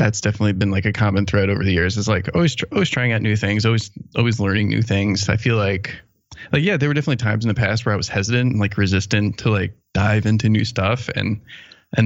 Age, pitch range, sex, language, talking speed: 20-39, 100-115 Hz, male, English, 250 wpm